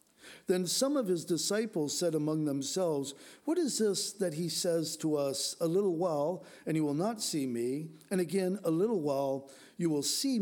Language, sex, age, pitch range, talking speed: English, male, 50-69, 150-185 Hz, 190 wpm